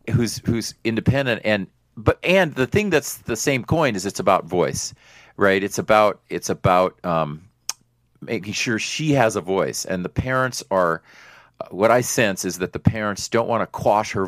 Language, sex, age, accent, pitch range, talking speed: English, male, 40-59, American, 95-125 Hz, 190 wpm